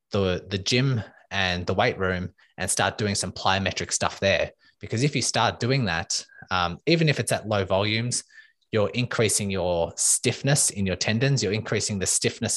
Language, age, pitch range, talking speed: English, 20-39, 95-115 Hz, 180 wpm